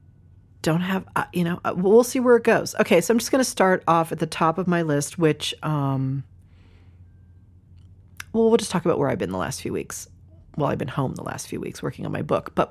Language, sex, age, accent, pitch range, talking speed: English, female, 40-59, American, 140-190 Hz, 235 wpm